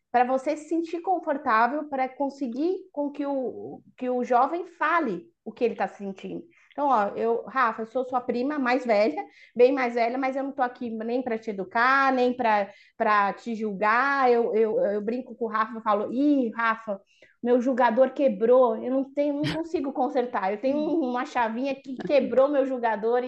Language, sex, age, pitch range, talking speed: Portuguese, female, 20-39, 205-260 Hz, 190 wpm